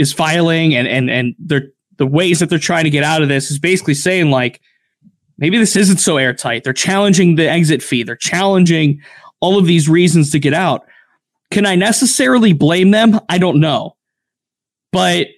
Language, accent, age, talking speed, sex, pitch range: English, American, 20-39, 185 wpm, male, 150-190 Hz